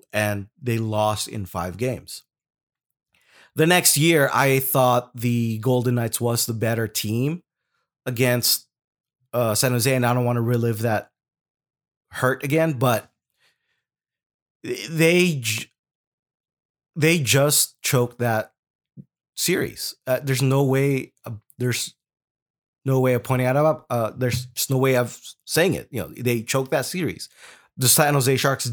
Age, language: 20-39, English